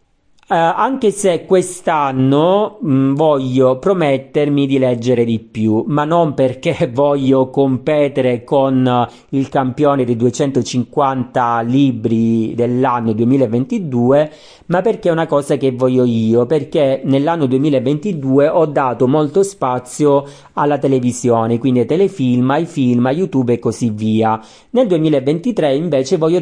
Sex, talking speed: male, 125 wpm